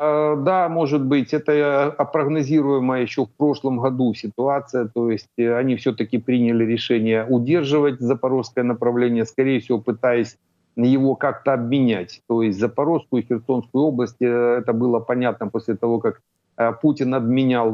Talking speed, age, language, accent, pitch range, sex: 130 wpm, 50-69, Ukrainian, native, 115-135 Hz, male